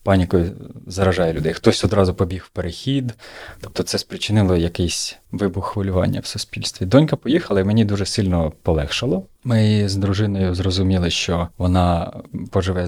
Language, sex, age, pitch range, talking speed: Ukrainian, male, 30-49, 85-105 Hz, 140 wpm